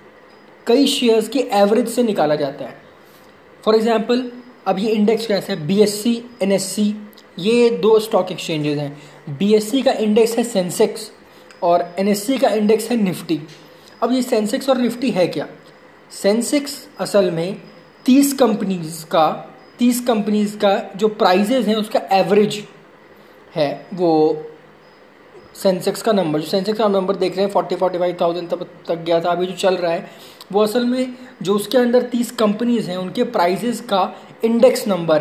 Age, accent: 20-39, native